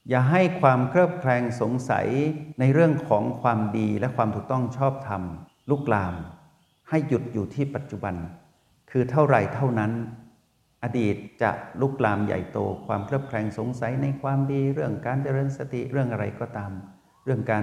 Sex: male